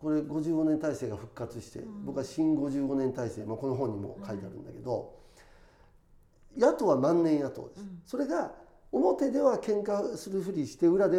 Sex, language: male, Japanese